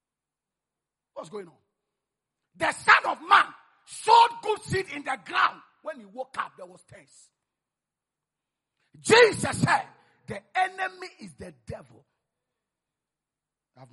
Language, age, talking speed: English, 40-59, 120 wpm